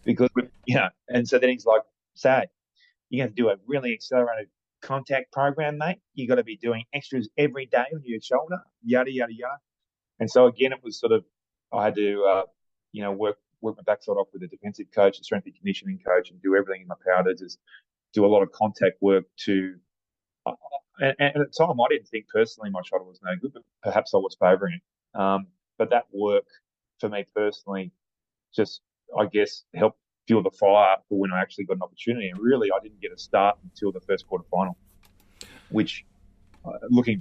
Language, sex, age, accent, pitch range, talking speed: English, male, 30-49, Australian, 95-135 Hz, 215 wpm